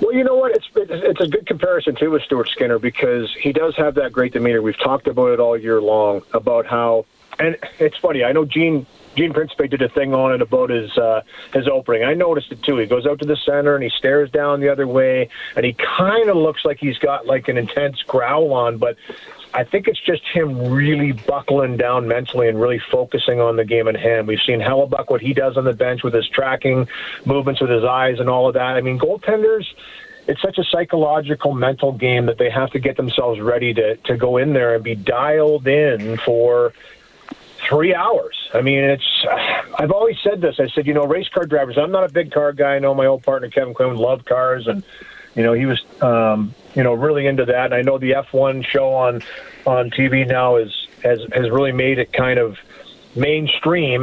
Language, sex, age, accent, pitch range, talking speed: English, male, 40-59, American, 125-155 Hz, 225 wpm